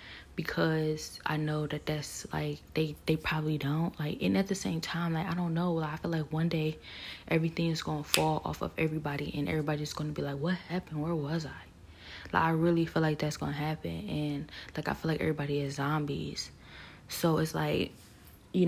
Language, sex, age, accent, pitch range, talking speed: English, female, 20-39, American, 150-165 Hz, 200 wpm